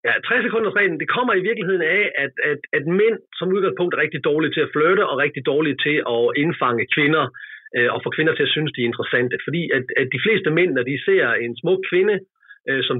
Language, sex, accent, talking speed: Danish, male, native, 240 wpm